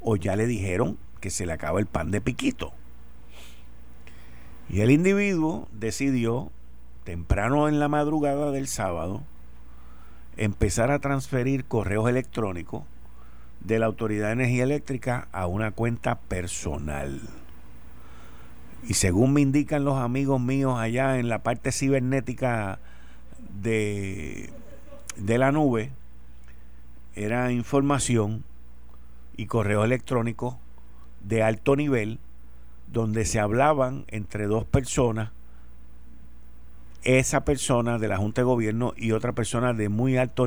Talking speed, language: 120 wpm, Spanish